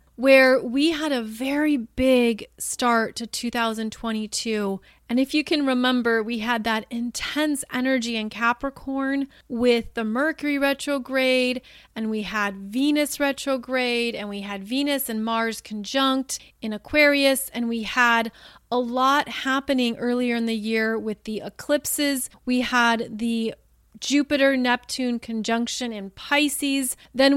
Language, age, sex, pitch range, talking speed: English, 30-49, female, 230-270 Hz, 130 wpm